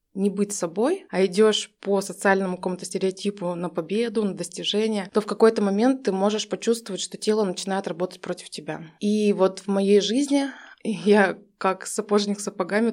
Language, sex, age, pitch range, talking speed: Russian, female, 20-39, 180-205 Hz, 160 wpm